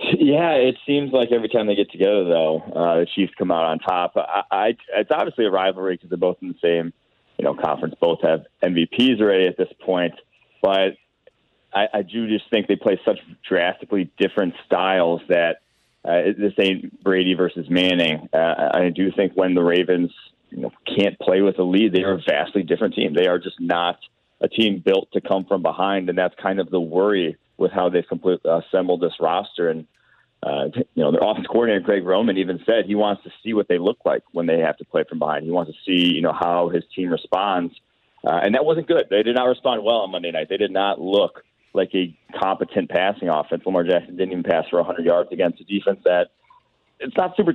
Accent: American